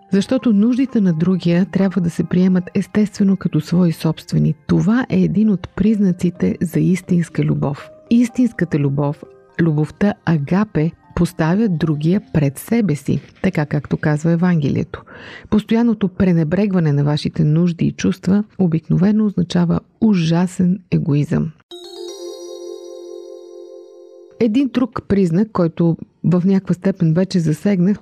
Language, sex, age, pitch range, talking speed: Bulgarian, female, 50-69, 160-210 Hz, 115 wpm